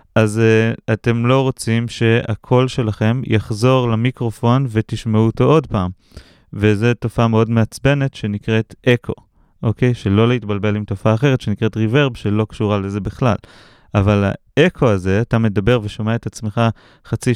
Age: 30-49